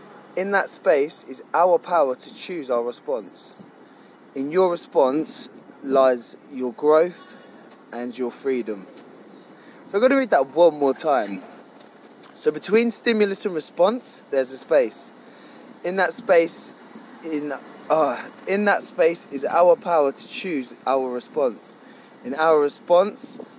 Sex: male